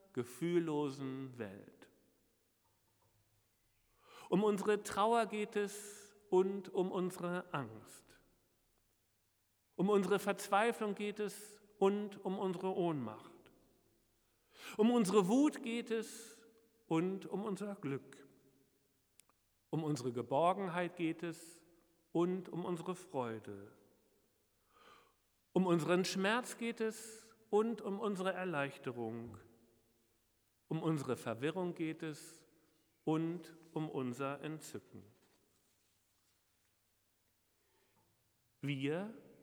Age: 50-69